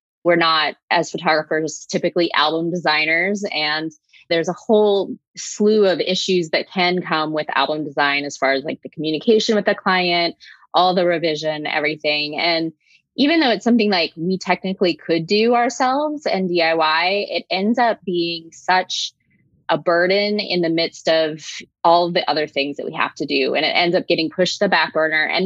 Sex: female